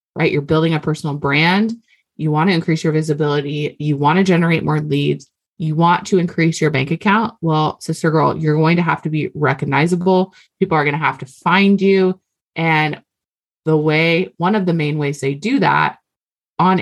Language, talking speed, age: English, 195 wpm, 20-39